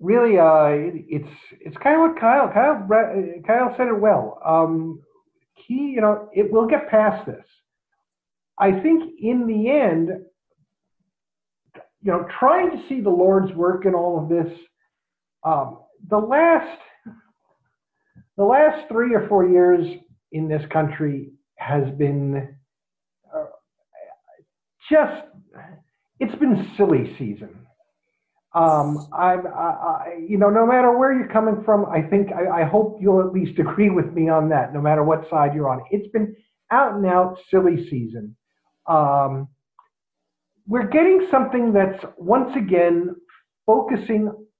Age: 50-69